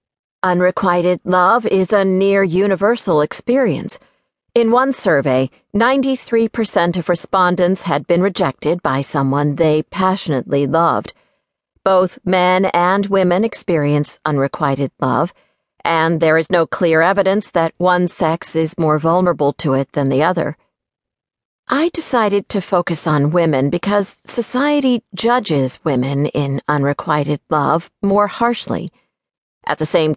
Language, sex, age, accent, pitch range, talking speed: English, female, 50-69, American, 160-210 Hz, 125 wpm